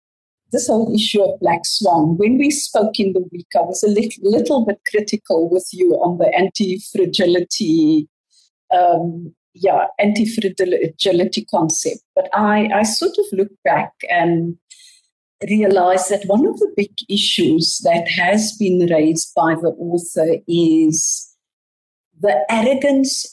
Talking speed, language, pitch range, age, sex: 130 wpm, English, 165-215 Hz, 50-69, female